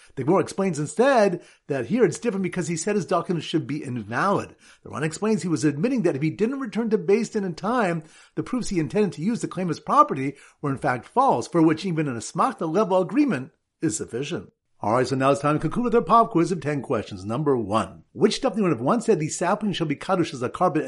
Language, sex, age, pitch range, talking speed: English, male, 50-69, 145-205 Hz, 245 wpm